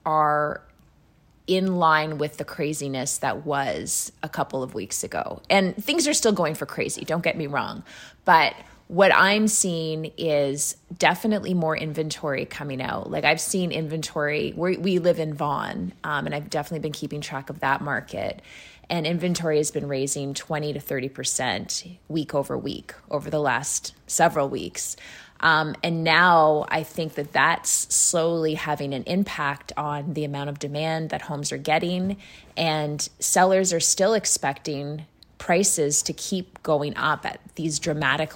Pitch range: 145-175 Hz